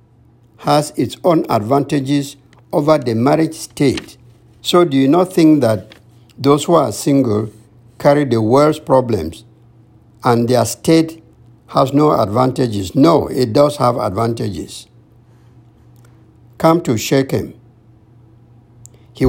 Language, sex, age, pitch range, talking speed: English, male, 60-79, 115-145 Hz, 115 wpm